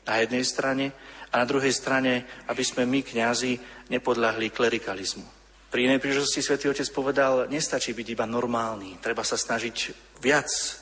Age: 40-59